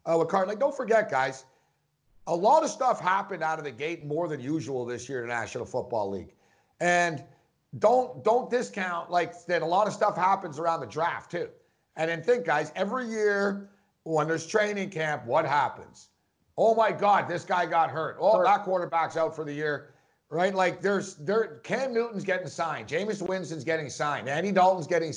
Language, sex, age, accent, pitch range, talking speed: English, male, 50-69, American, 150-195 Hz, 195 wpm